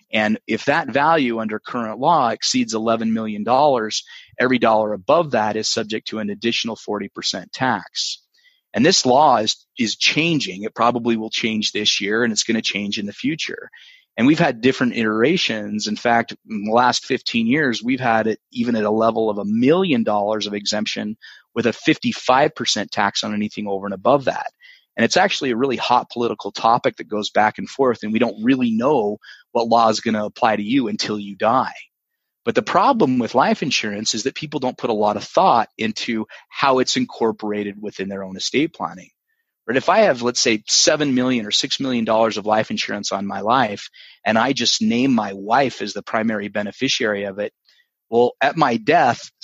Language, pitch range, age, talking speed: English, 105-135 Hz, 30-49, 200 wpm